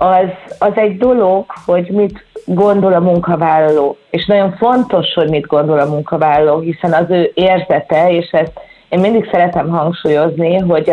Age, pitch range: 30-49, 155-185 Hz